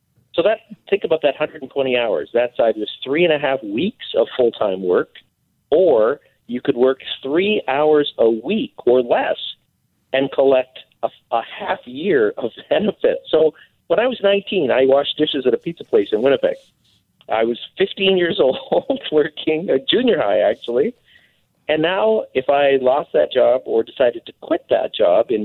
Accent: American